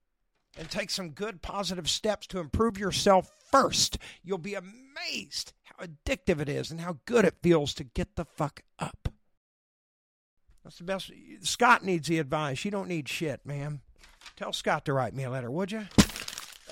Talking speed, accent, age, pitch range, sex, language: 170 wpm, American, 50-69, 135-185 Hz, male, English